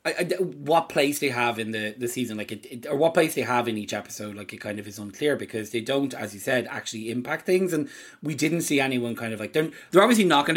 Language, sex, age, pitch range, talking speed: English, male, 20-39, 110-140 Hz, 280 wpm